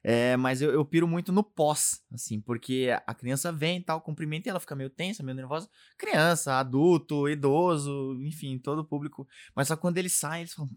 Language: Portuguese